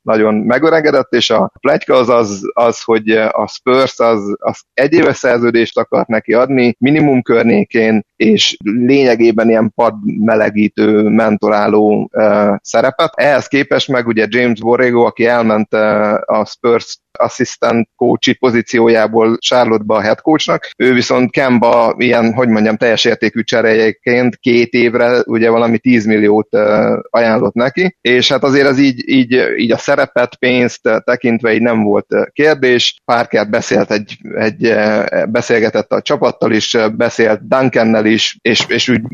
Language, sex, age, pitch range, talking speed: Hungarian, male, 30-49, 110-120 Hz, 145 wpm